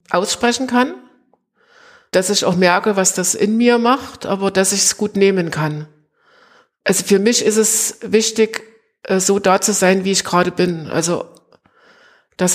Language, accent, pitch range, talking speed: German, German, 185-225 Hz, 165 wpm